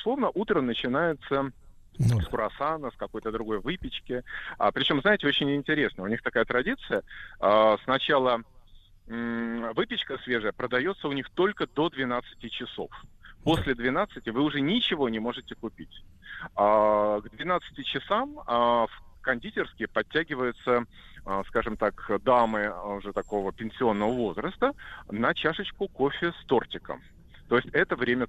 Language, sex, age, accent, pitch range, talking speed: Russian, male, 30-49, native, 105-150 Hz, 125 wpm